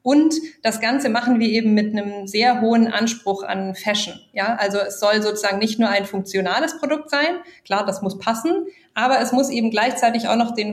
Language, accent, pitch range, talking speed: German, German, 195-240 Hz, 200 wpm